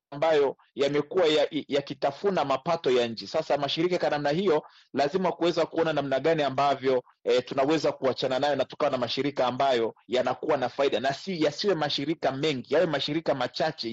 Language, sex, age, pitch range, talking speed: Swahili, male, 40-59, 135-175 Hz, 160 wpm